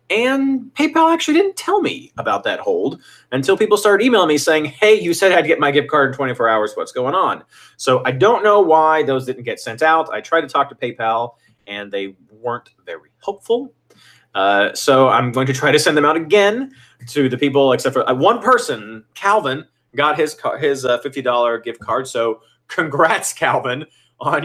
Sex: male